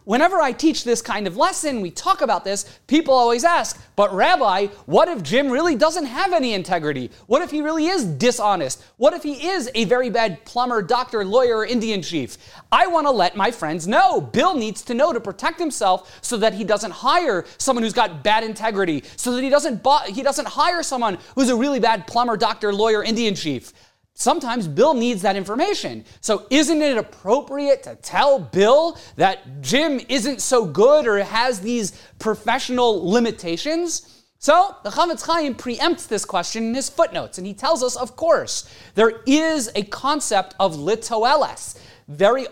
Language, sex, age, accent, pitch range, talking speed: English, male, 30-49, American, 210-295 Hz, 180 wpm